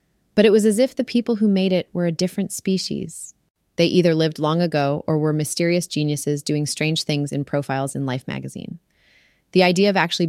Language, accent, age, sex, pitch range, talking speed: English, American, 30-49, female, 150-180 Hz, 205 wpm